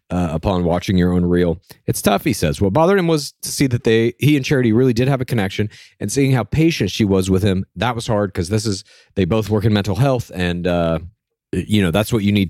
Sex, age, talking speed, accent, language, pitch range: male, 30-49, 255 wpm, American, English, 100-145 Hz